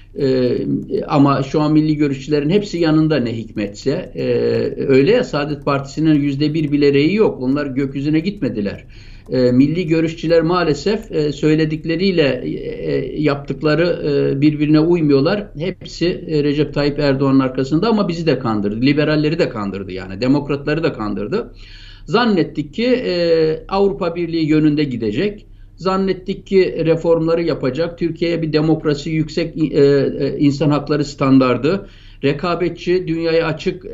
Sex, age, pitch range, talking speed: male, 60-79, 140-185 Hz, 125 wpm